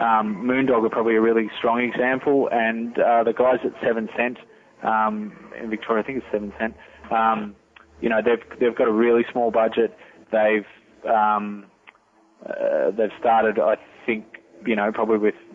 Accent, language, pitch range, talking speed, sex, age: Australian, English, 110-115 Hz, 170 wpm, male, 20-39